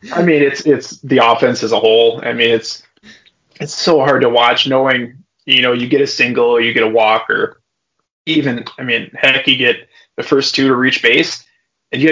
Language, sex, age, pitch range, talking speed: English, male, 20-39, 115-155 Hz, 220 wpm